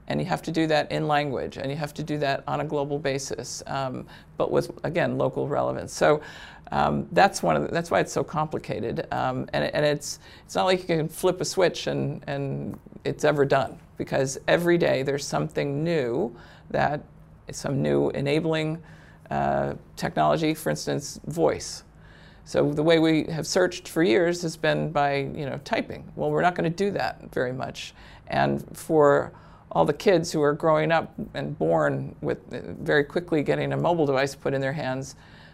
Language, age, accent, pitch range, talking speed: English, 50-69, American, 135-165 Hz, 190 wpm